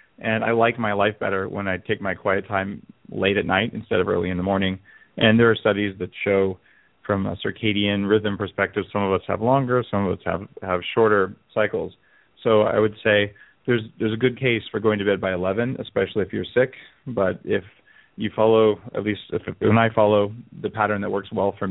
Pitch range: 100-115 Hz